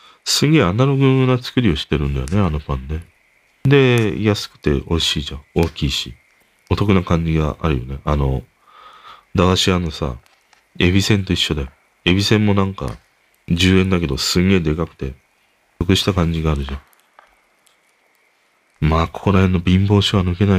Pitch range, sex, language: 75-120 Hz, male, Japanese